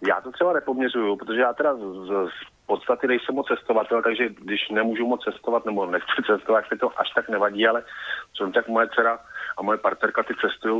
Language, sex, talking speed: Slovak, male, 205 wpm